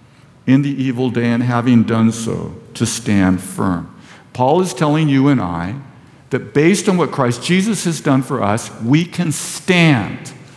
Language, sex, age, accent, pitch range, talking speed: English, male, 50-69, American, 115-150 Hz, 170 wpm